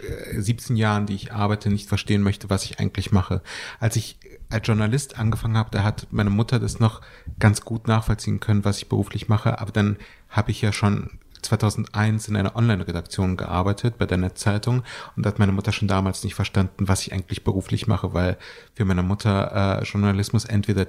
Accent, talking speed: German, 190 wpm